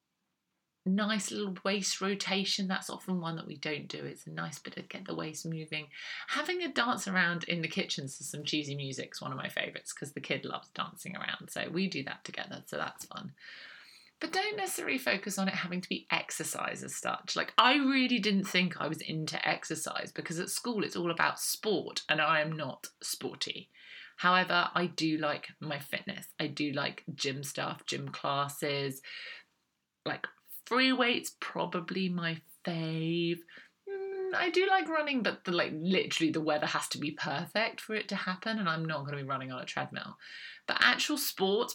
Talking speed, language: 190 wpm, English